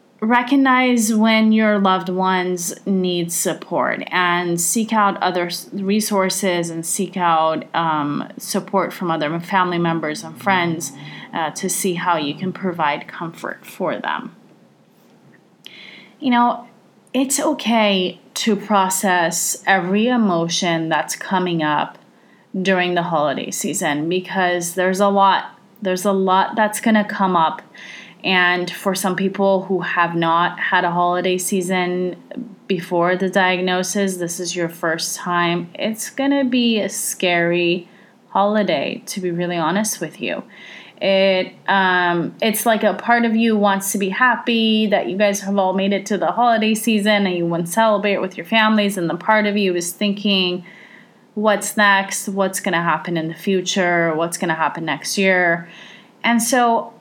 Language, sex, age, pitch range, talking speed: English, female, 30-49, 175-210 Hz, 155 wpm